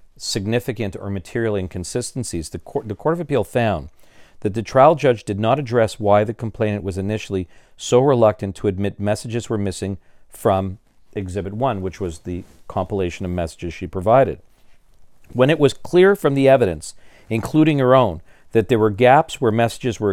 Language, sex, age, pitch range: English, male, 50-69, 95-125 Hz